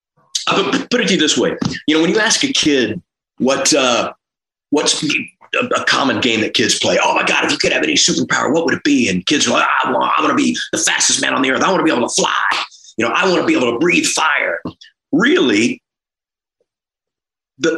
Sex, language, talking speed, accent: male, English, 235 wpm, American